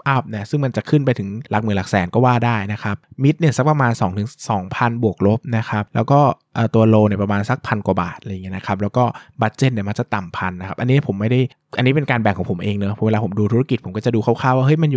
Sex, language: male, Thai